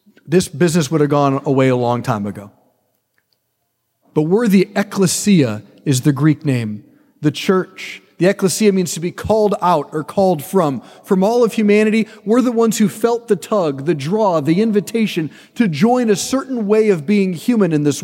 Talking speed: 185 wpm